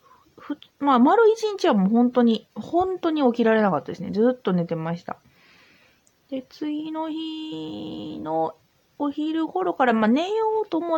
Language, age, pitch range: Japanese, 30-49, 165-270 Hz